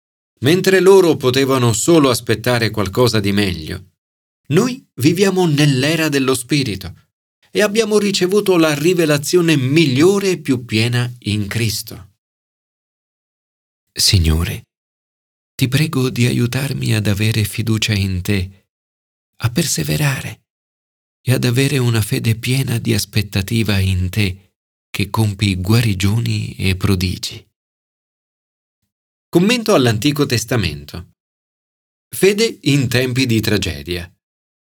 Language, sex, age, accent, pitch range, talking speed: Italian, male, 40-59, native, 100-150 Hz, 100 wpm